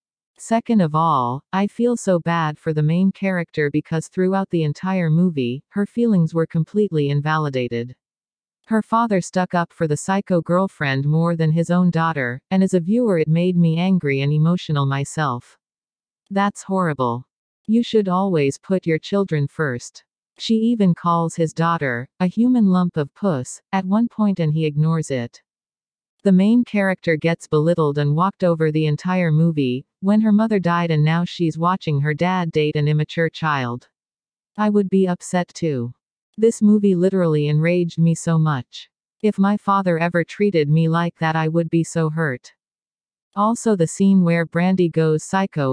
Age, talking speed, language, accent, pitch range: 40-59, 170 wpm, English, American, 155-190 Hz